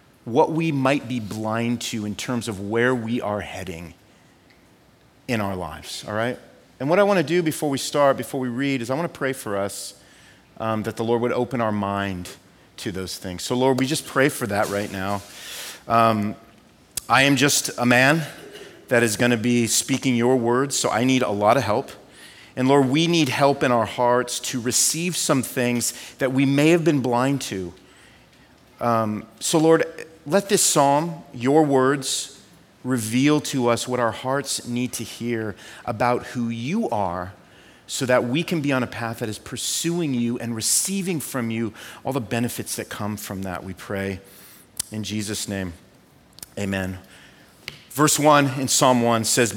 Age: 40-59